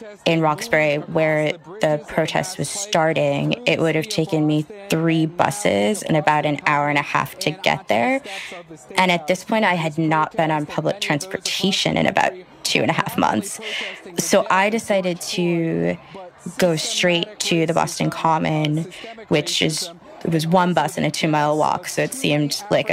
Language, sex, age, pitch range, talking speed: English, female, 20-39, 150-185 Hz, 175 wpm